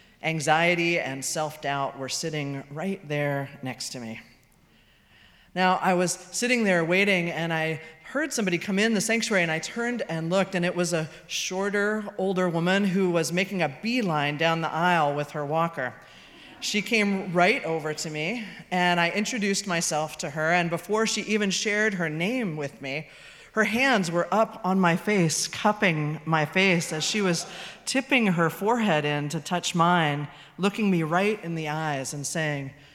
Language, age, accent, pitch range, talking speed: English, 30-49, American, 150-200 Hz, 175 wpm